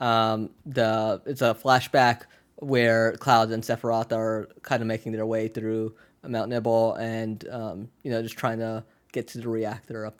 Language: English